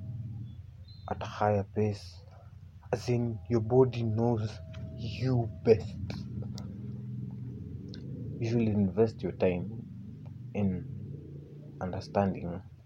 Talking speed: 80 wpm